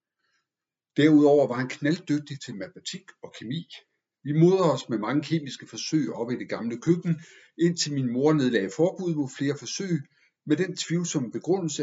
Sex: male